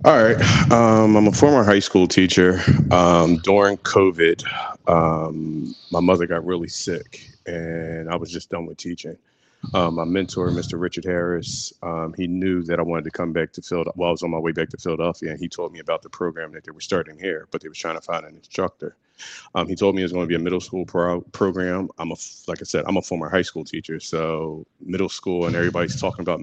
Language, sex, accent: English, male, American